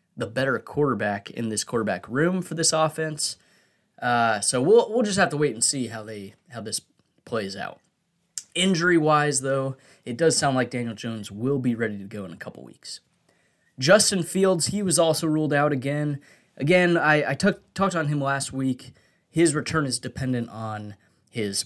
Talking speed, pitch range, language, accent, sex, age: 185 wpm, 120-155 Hz, English, American, male, 20-39